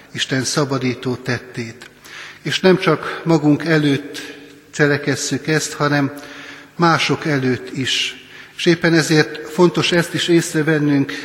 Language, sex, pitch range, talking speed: Hungarian, male, 140-155 Hz, 110 wpm